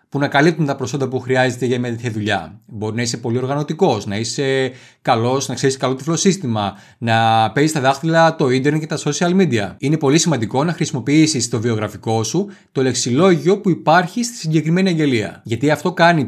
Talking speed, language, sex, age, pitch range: 190 wpm, Greek, male, 30-49, 120-165 Hz